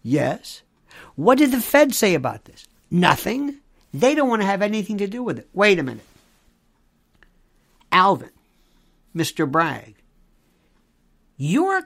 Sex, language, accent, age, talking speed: male, English, American, 60-79, 130 wpm